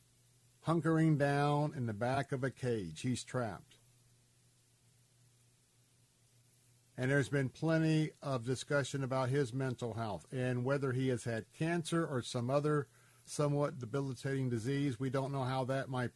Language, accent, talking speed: English, American, 140 wpm